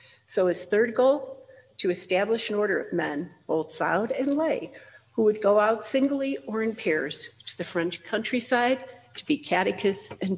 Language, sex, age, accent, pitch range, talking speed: English, female, 60-79, American, 180-255 Hz, 175 wpm